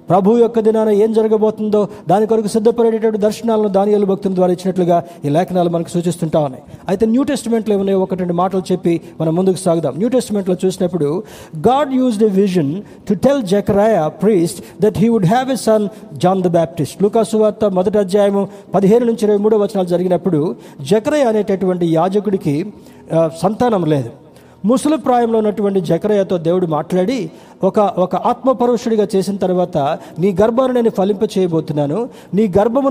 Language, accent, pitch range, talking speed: Telugu, native, 170-215 Hz, 150 wpm